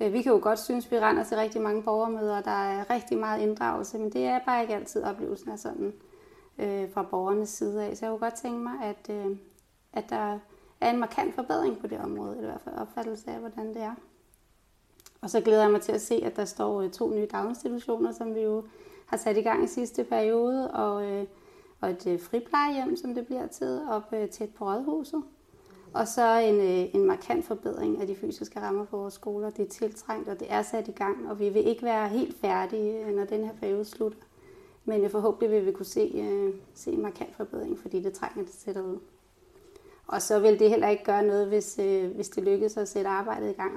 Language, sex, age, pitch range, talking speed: Danish, female, 30-49, 205-245 Hz, 225 wpm